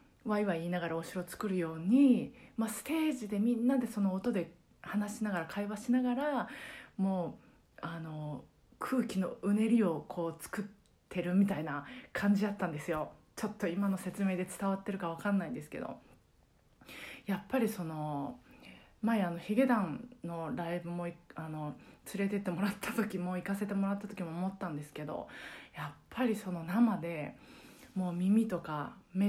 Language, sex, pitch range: Japanese, female, 170-220 Hz